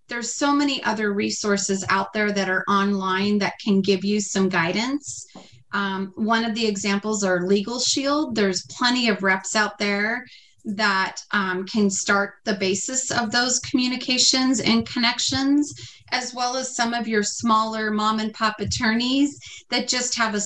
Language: English